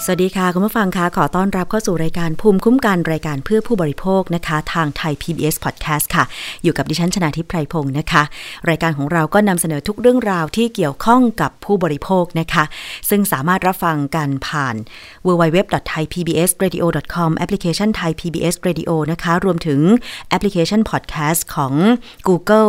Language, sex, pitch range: Thai, female, 155-185 Hz